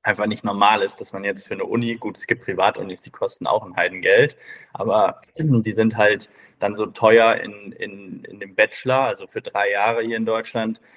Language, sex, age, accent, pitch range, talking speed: German, male, 20-39, German, 105-125 Hz, 210 wpm